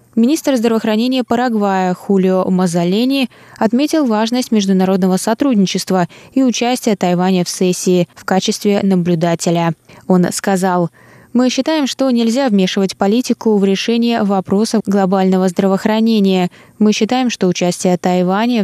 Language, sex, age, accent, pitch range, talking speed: Russian, female, 20-39, native, 185-235 Hz, 115 wpm